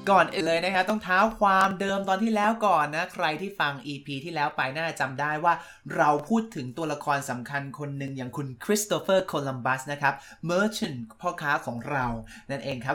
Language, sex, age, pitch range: Thai, male, 20-39, 135-185 Hz